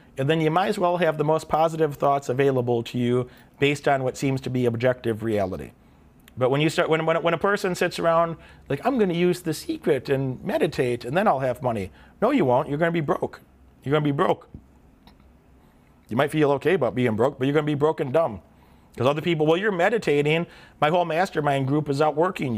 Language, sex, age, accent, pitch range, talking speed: English, male, 40-59, American, 125-170 Hz, 230 wpm